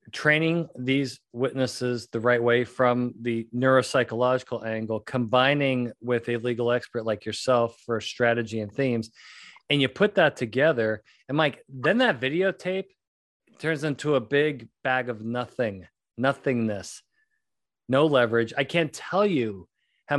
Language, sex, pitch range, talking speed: English, male, 115-150 Hz, 135 wpm